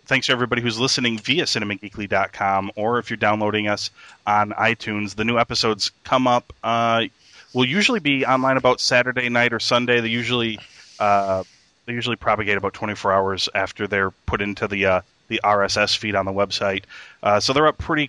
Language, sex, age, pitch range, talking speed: English, male, 30-49, 100-115 Hz, 180 wpm